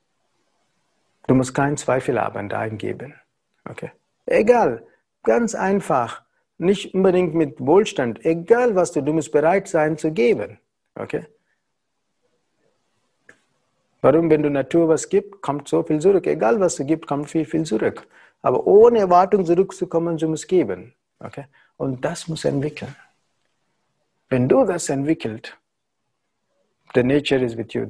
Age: 60-79